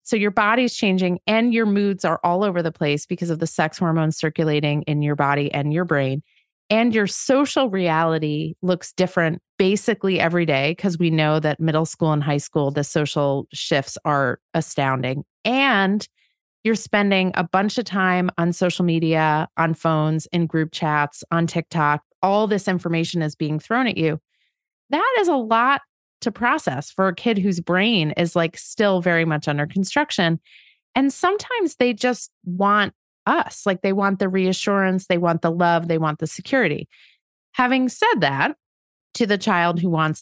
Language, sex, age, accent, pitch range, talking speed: English, female, 30-49, American, 150-200 Hz, 175 wpm